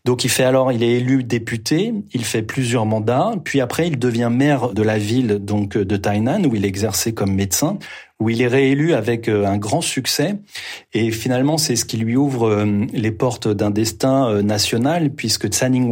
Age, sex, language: 30-49, male, French